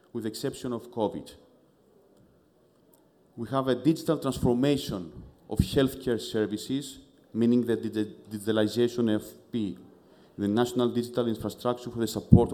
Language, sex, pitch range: English, male, 110-135 Hz